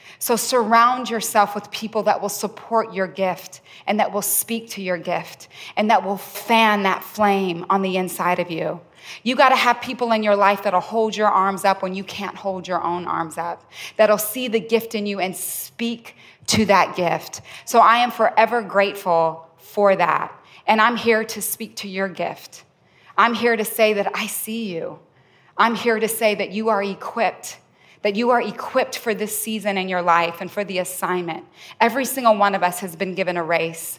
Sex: female